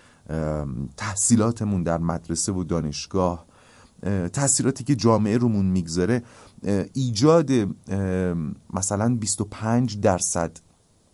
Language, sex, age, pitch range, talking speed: Persian, male, 30-49, 90-115 Hz, 80 wpm